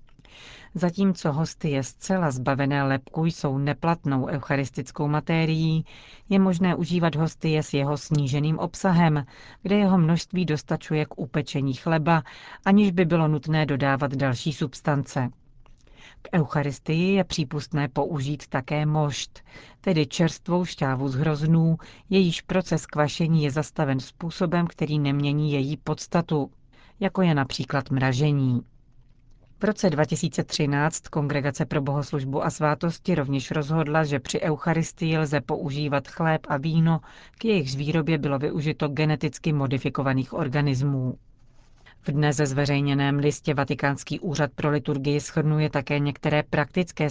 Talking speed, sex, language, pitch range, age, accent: 125 wpm, female, Czech, 140-165 Hz, 40-59, native